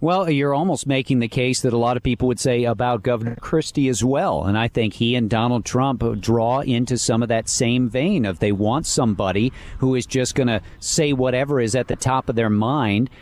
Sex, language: male, English